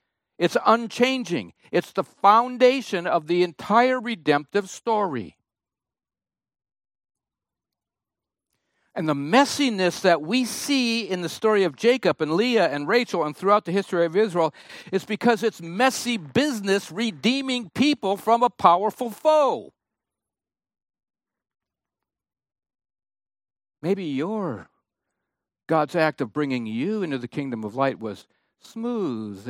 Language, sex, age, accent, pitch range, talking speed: English, male, 60-79, American, 155-235 Hz, 115 wpm